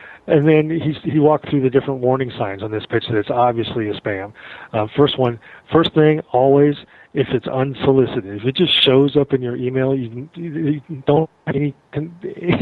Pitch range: 110-150 Hz